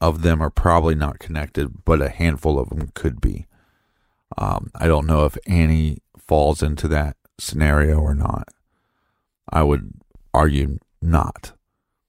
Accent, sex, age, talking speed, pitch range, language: American, male, 40-59, 145 wpm, 75-90 Hz, English